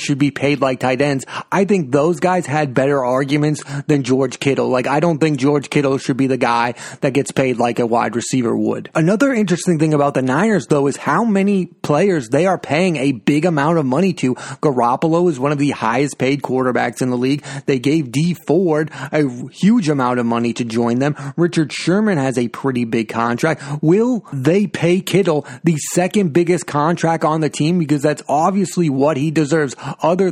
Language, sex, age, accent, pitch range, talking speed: English, male, 30-49, American, 135-165 Hz, 200 wpm